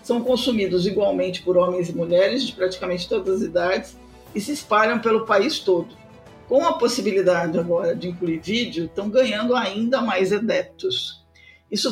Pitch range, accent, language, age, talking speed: 185-245 Hz, Brazilian, Portuguese, 50-69, 155 wpm